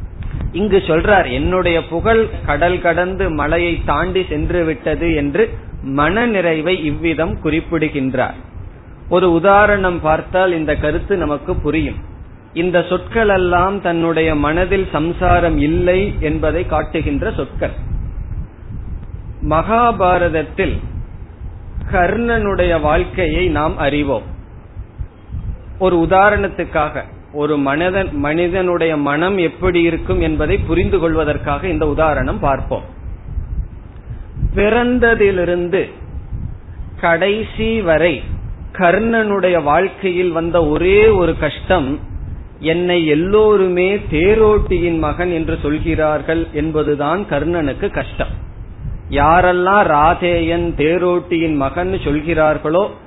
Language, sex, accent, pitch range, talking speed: Tamil, male, native, 145-180 Hz, 80 wpm